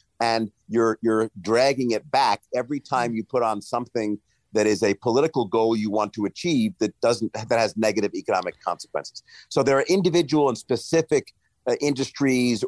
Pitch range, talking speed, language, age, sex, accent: 105-140 Hz, 170 wpm, English, 50-69, male, American